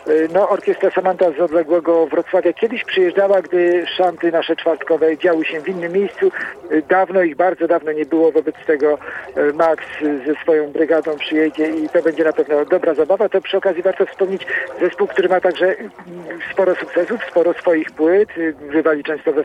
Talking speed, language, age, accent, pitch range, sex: 165 wpm, Polish, 50-69, native, 160-190 Hz, male